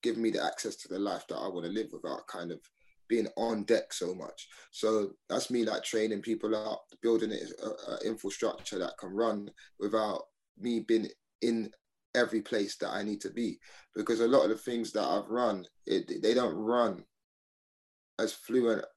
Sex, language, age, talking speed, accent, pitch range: male, English, 20-39, 185 wpm, British, 105-115 Hz